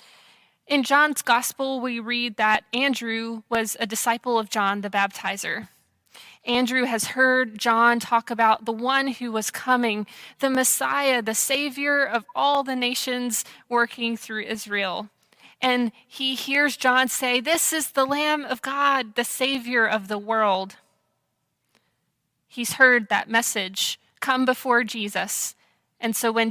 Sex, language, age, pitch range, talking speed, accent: female, English, 20-39, 215-260 Hz, 140 wpm, American